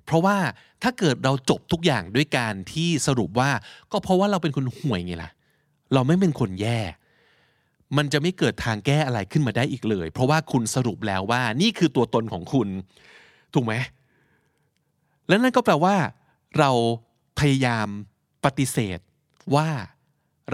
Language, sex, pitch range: Thai, male, 115-155 Hz